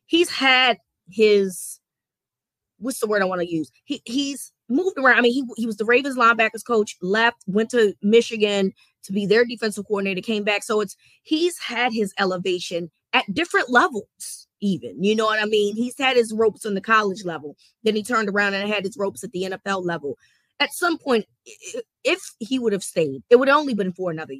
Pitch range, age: 180-225 Hz, 20-39